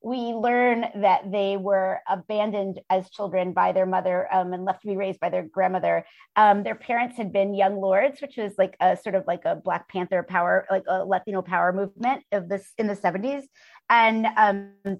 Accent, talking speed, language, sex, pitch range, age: American, 200 wpm, English, female, 190-225 Hz, 30-49